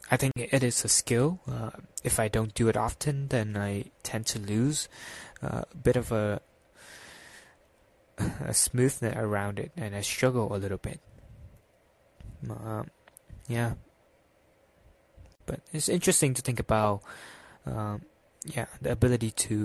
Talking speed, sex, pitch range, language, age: 140 wpm, male, 110-130 Hz, English, 20-39